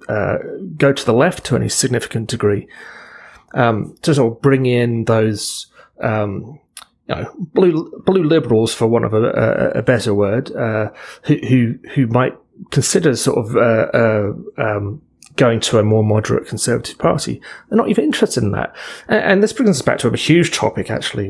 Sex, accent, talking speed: male, British, 185 wpm